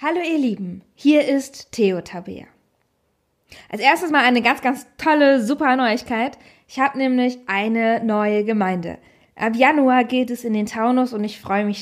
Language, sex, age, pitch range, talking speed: German, female, 20-39, 205-260 Hz, 170 wpm